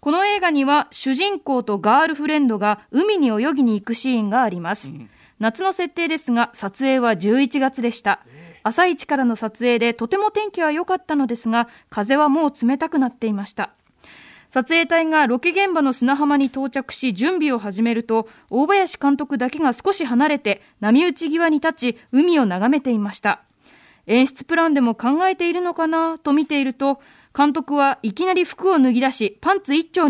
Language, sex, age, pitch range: Japanese, female, 20-39, 240-330 Hz